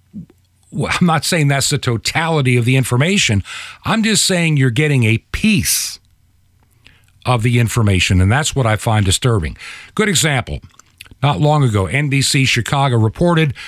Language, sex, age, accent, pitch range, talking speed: English, male, 50-69, American, 105-140 Hz, 150 wpm